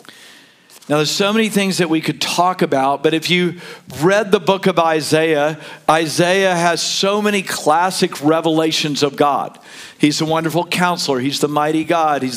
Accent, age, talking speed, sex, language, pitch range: American, 50-69, 170 wpm, male, English, 160-205 Hz